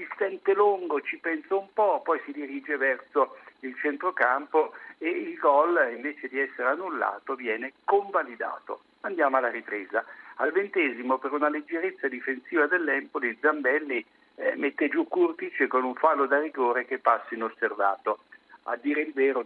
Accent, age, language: native, 60-79, Italian